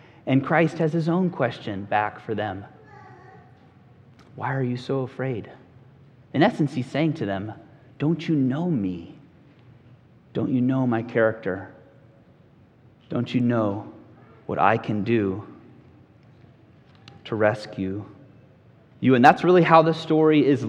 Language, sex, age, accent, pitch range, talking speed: English, male, 30-49, American, 120-155 Hz, 135 wpm